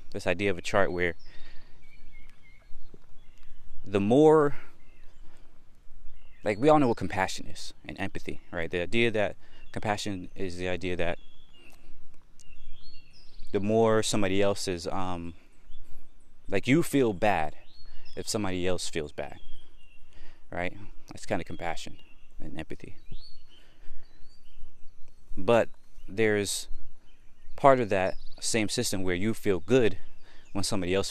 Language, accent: English, American